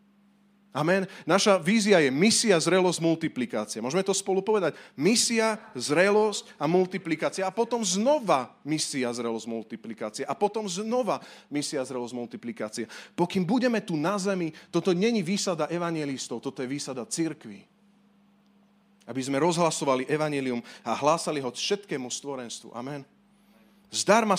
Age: 30-49